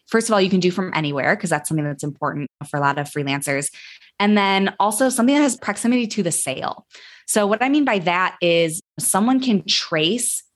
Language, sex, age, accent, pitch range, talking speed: English, female, 20-39, American, 165-215 Hz, 215 wpm